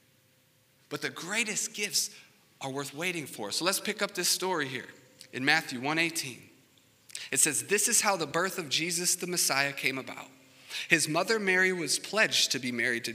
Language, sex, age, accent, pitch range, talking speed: English, male, 40-59, American, 130-190 Hz, 185 wpm